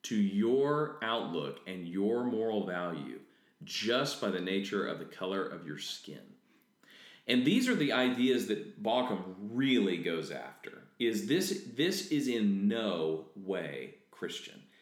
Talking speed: 140 wpm